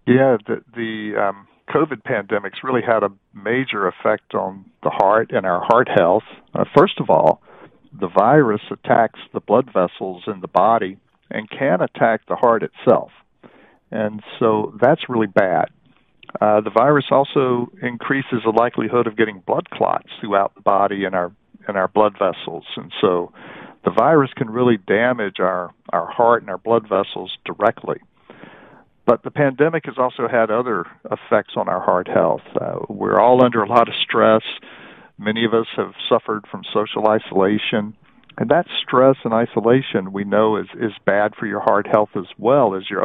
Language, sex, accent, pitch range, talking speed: English, male, American, 105-120 Hz, 170 wpm